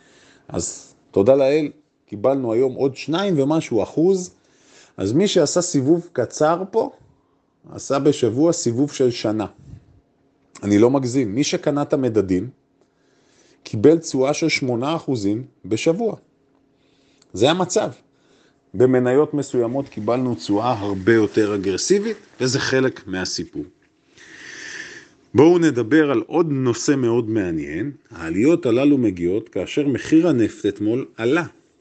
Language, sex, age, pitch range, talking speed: Hebrew, male, 40-59, 130-195 Hz, 115 wpm